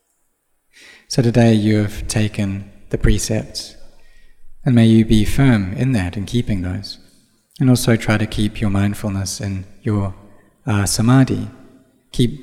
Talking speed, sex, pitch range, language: 140 wpm, male, 100-120 Hz, English